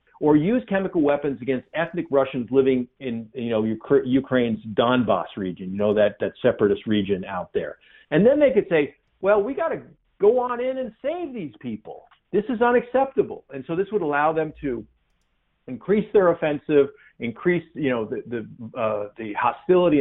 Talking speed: 175 wpm